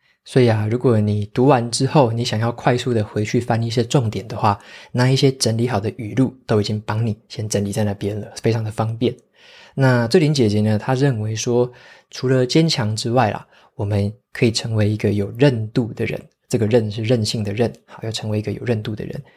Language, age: Chinese, 20-39